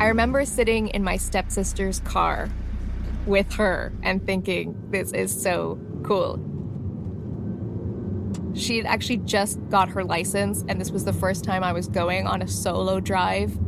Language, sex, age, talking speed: English, female, 20-39, 155 wpm